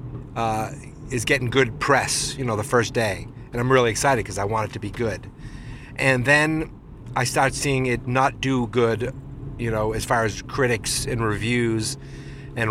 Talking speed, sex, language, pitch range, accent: 185 wpm, male, English, 120-140 Hz, American